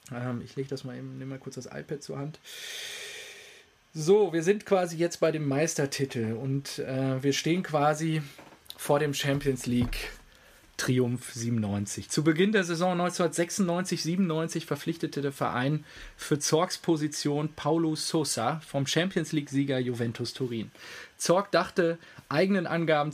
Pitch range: 130-165 Hz